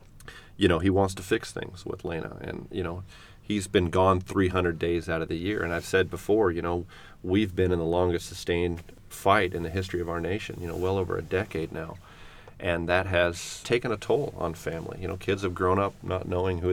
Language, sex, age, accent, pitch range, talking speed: English, male, 40-59, American, 85-95 Hz, 230 wpm